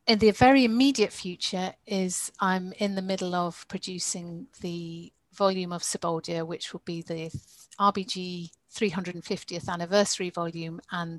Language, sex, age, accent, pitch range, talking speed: English, female, 40-59, British, 170-195 Hz, 135 wpm